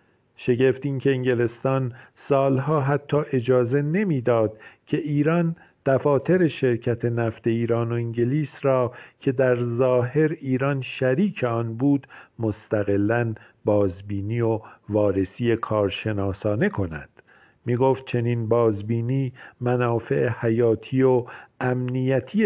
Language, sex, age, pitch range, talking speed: Persian, male, 50-69, 110-130 Hz, 100 wpm